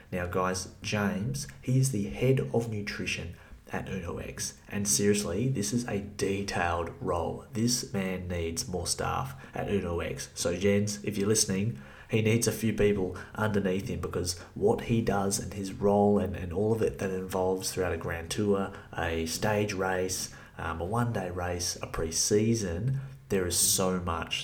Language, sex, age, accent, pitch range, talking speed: English, male, 30-49, Australian, 95-120 Hz, 170 wpm